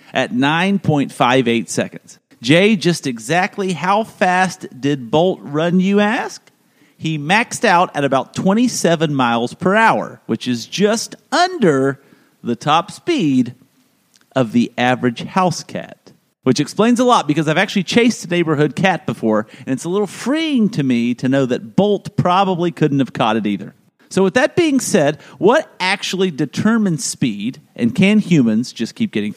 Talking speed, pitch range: 160 wpm, 145-225 Hz